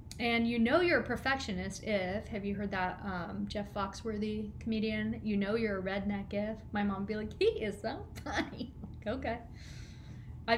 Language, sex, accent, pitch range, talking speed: English, female, American, 200-245 Hz, 180 wpm